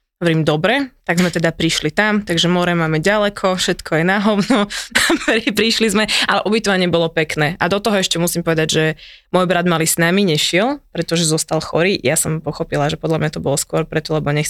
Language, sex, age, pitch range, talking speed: Slovak, female, 20-39, 165-195 Hz, 195 wpm